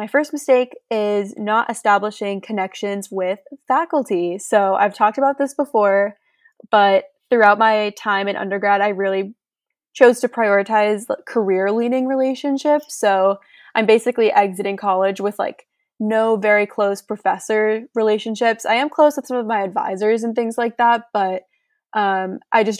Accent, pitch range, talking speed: American, 200-240 Hz, 145 wpm